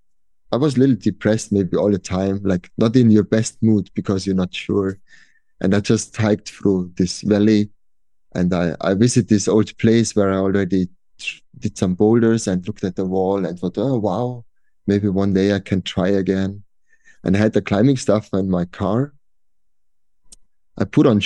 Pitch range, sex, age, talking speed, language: 95-115 Hz, male, 30-49, 190 wpm, English